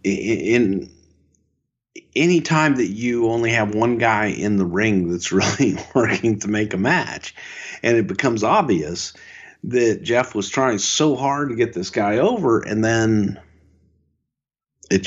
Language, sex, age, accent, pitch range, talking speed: English, male, 50-69, American, 95-115 Hz, 150 wpm